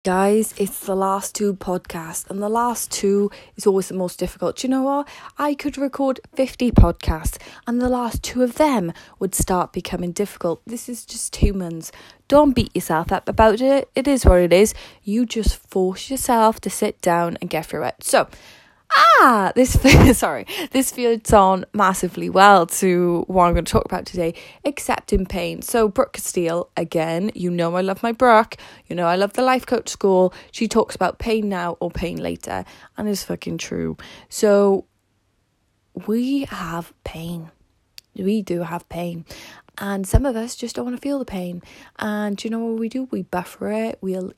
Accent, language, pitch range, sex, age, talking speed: British, English, 175-225 Hz, female, 20-39, 190 wpm